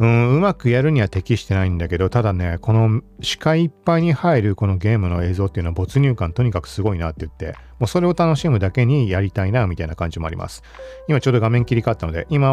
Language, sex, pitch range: Japanese, male, 90-145 Hz